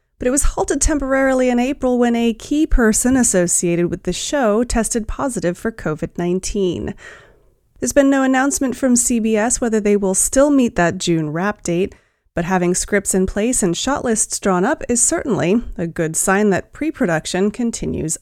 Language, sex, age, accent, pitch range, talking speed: English, female, 30-49, American, 180-255 Hz, 170 wpm